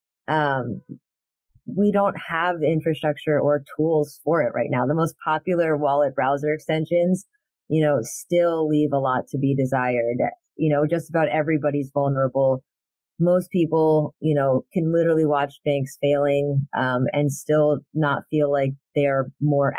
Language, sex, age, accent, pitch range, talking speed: English, female, 30-49, American, 145-180 Hz, 150 wpm